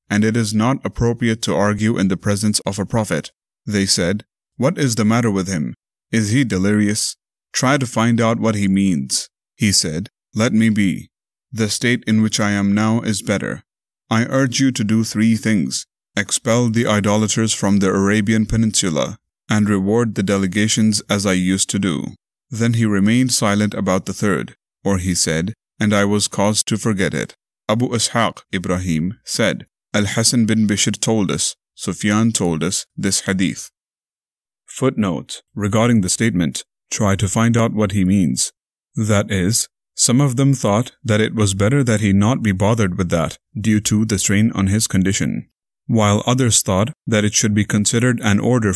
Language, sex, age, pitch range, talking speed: English, male, 30-49, 100-115 Hz, 175 wpm